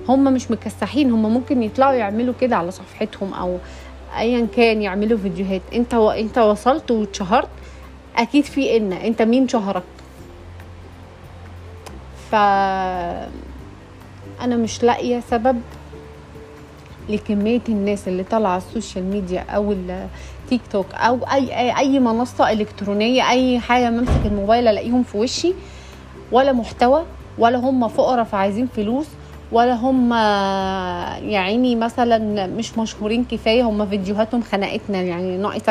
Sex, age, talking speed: female, 30-49, 120 wpm